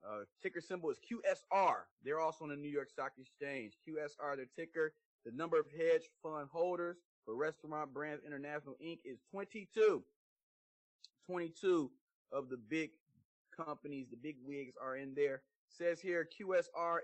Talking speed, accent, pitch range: 150 wpm, American, 145-180 Hz